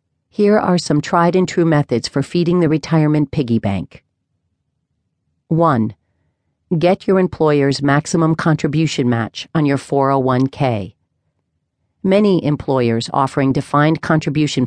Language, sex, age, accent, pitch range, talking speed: English, female, 40-59, American, 120-165 Hz, 105 wpm